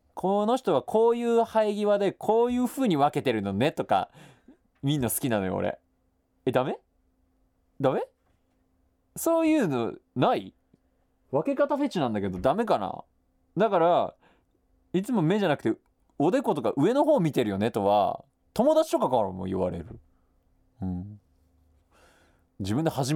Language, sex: Japanese, male